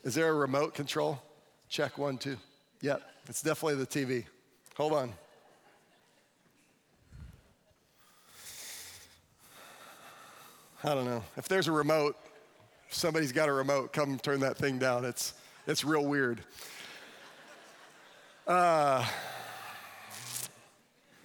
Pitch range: 135-170 Hz